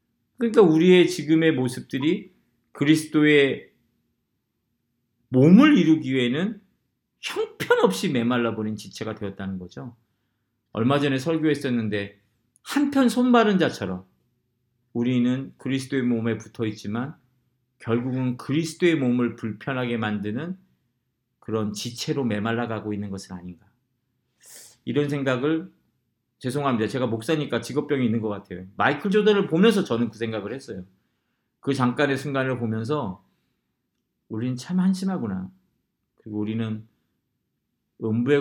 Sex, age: male, 40-59